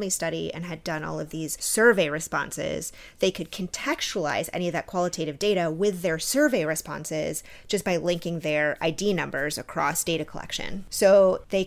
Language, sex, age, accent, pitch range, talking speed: English, female, 30-49, American, 170-200 Hz, 165 wpm